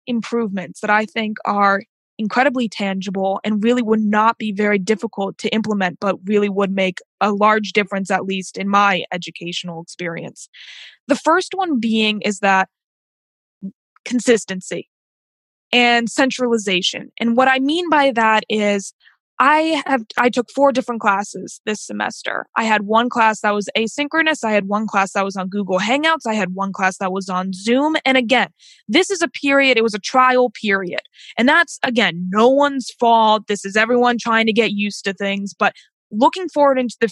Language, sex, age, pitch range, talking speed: English, female, 20-39, 200-255 Hz, 175 wpm